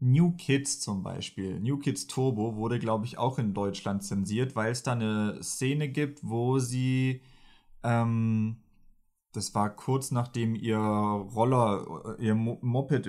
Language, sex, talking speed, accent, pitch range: German, male, 140 wpm, German, 120-150 Hz